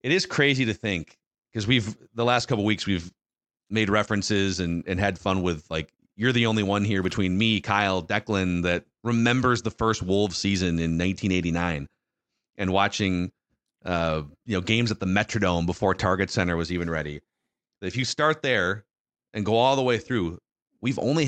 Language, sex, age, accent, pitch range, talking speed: English, male, 30-49, American, 95-125 Hz, 185 wpm